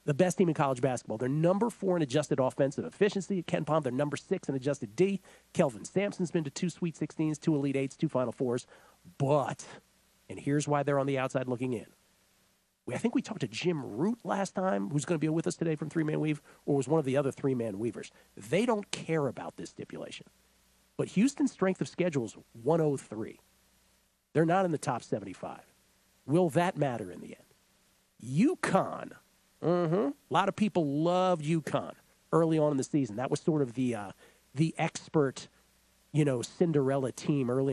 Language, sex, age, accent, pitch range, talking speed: English, male, 50-69, American, 135-175 Hz, 195 wpm